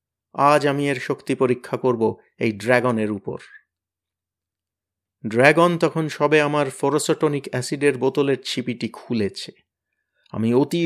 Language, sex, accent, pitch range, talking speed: Bengali, male, native, 110-140 Hz, 65 wpm